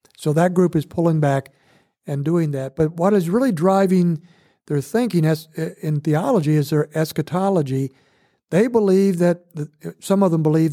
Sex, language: male, English